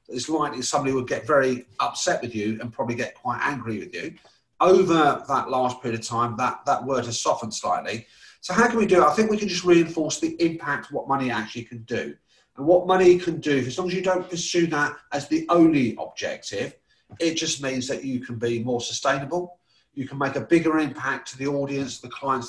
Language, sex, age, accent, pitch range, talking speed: English, male, 40-59, British, 125-160 Hz, 225 wpm